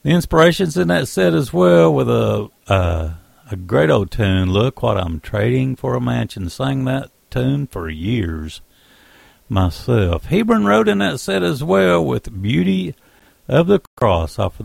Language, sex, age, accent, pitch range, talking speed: English, male, 60-79, American, 85-125 Hz, 170 wpm